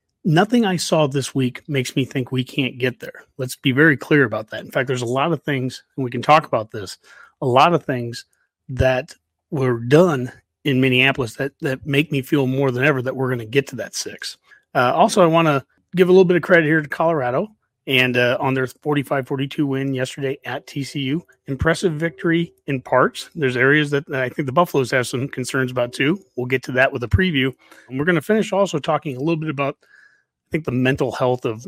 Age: 30-49